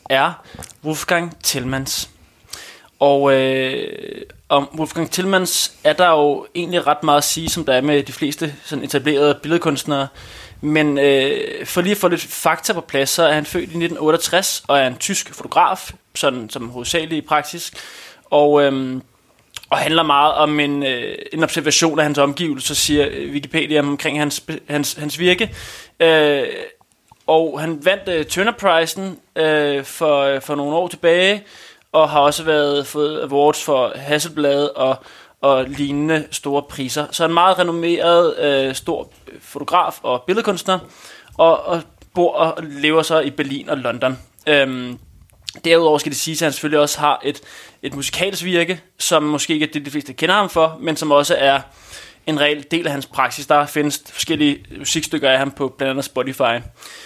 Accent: native